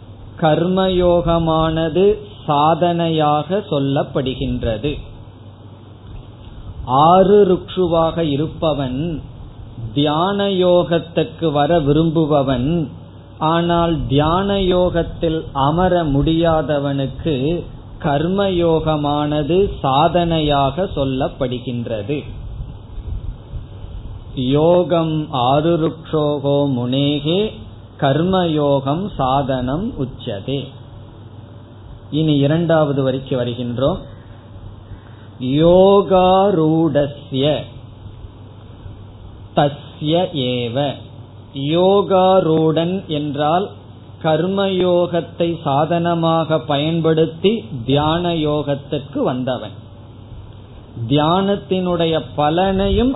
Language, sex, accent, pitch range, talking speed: Tamil, male, native, 120-165 Hz, 40 wpm